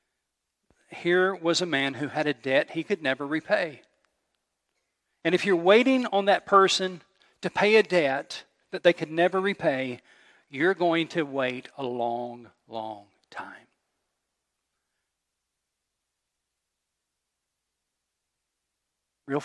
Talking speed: 115 wpm